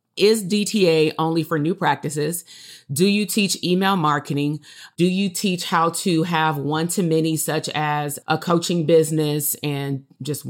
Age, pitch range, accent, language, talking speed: 30-49, 150-175 Hz, American, English, 145 wpm